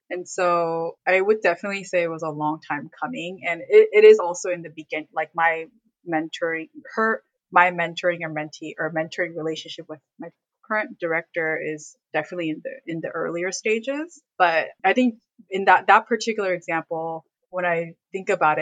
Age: 20-39